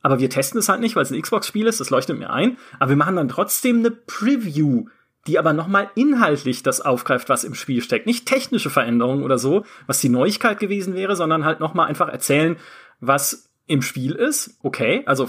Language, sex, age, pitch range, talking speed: German, male, 30-49, 135-210 Hz, 215 wpm